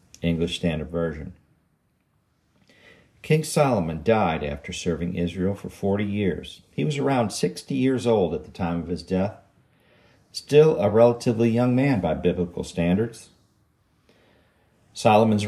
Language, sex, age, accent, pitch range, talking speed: English, male, 50-69, American, 85-115 Hz, 130 wpm